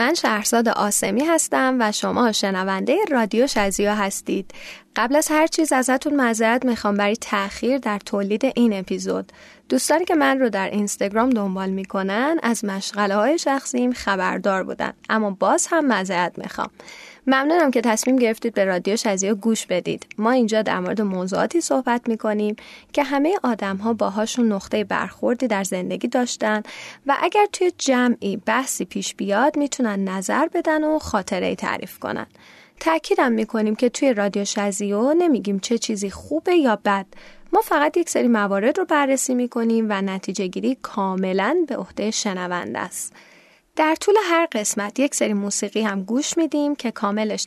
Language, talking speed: Persian, 155 wpm